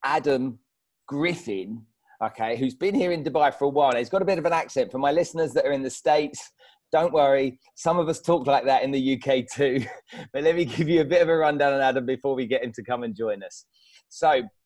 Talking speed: 250 wpm